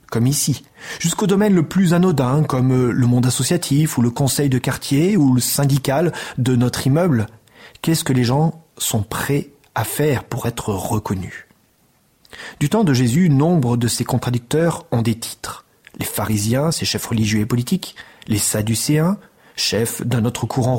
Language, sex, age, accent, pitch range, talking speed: French, male, 30-49, French, 120-160 Hz, 165 wpm